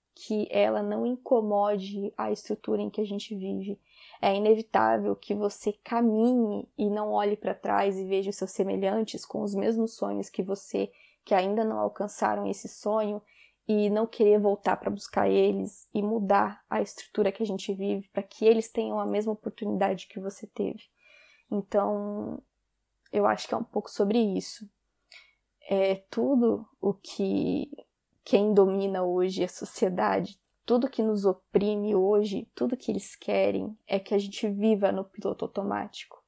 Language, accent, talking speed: Portuguese, Brazilian, 160 wpm